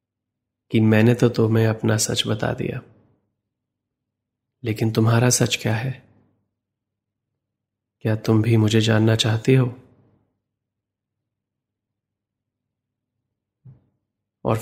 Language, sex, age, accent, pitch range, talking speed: Hindi, male, 20-39, native, 105-120 Hz, 90 wpm